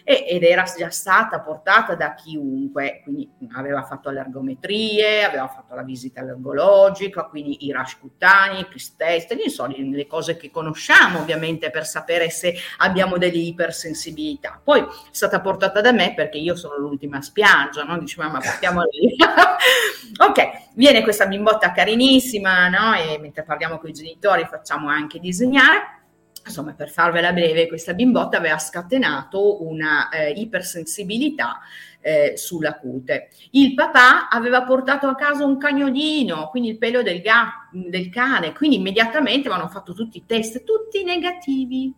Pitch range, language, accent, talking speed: 160-260 Hz, Italian, native, 150 wpm